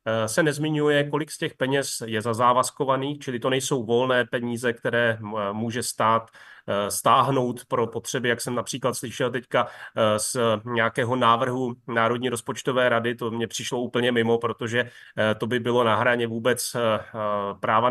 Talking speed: 145 wpm